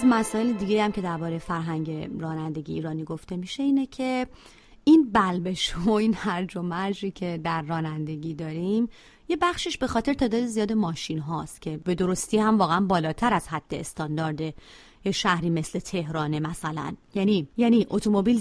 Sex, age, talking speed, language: female, 30-49, 155 wpm, Persian